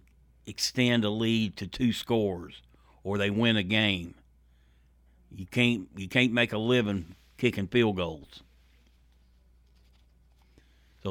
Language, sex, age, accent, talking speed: English, male, 60-79, American, 120 wpm